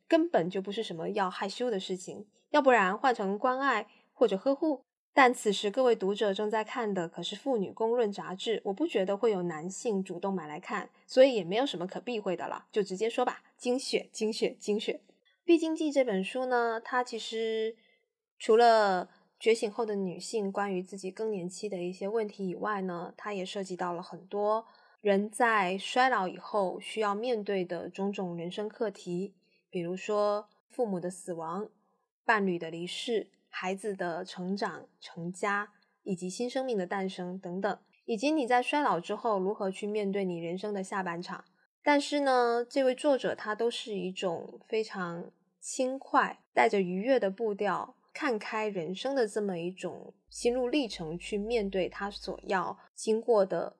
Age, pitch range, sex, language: 20-39, 185-235 Hz, female, Chinese